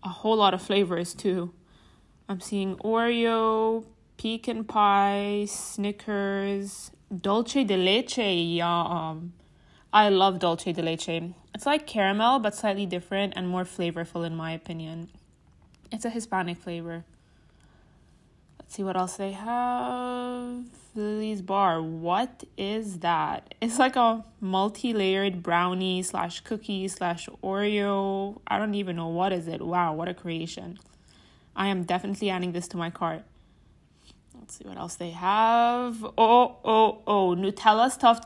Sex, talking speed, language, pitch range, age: female, 135 wpm, English, 180-220 Hz, 20-39